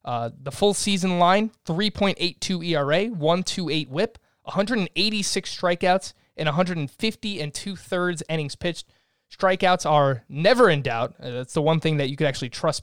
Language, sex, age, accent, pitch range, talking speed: English, male, 20-39, American, 140-185 Hz, 155 wpm